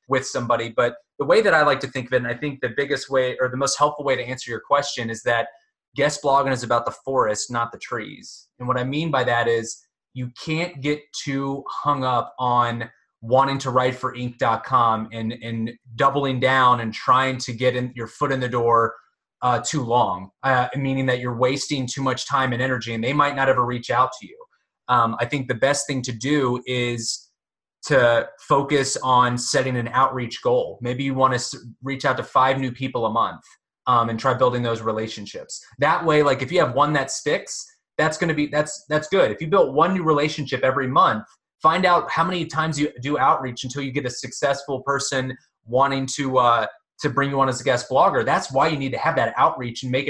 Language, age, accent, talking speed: English, 20-39, American, 225 wpm